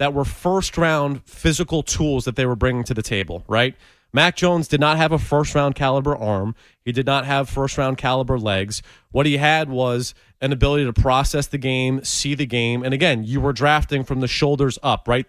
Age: 30-49